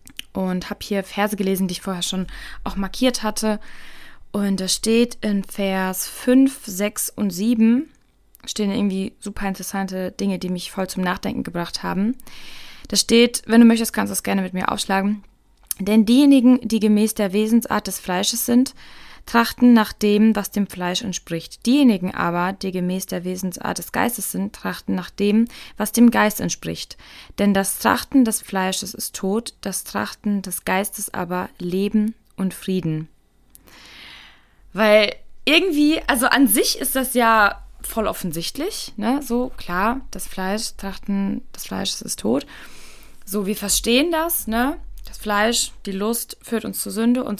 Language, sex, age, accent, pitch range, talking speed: German, female, 20-39, German, 190-235 Hz, 160 wpm